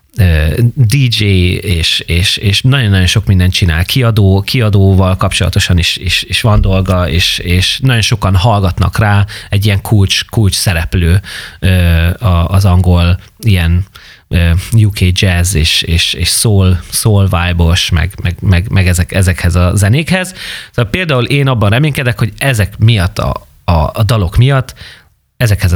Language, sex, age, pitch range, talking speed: Hungarian, male, 30-49, 90-115 Hz, 135 wpm